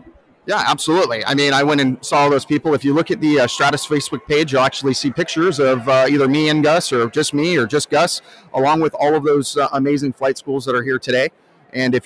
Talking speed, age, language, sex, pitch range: 255 wpm, 30-49, English, male, 135-160 Hz